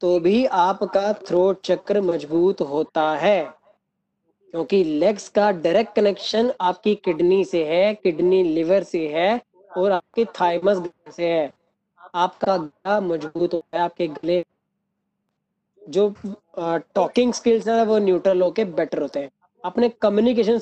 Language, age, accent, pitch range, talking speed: Hindi, 20-39, native, 180-210 Hz, 130 wpm